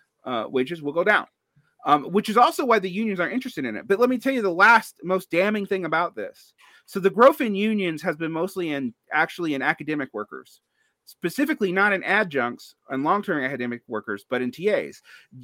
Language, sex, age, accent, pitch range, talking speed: English, male, 30-49, American, 125-190 Hz, 200 wpm